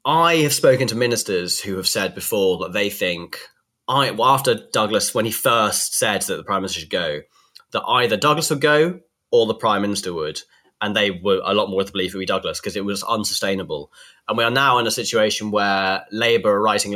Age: 20-39